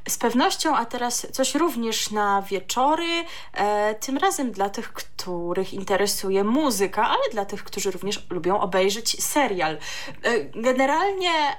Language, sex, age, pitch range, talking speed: Polish, female, 20-39, 205-275 Hz, 125 wpm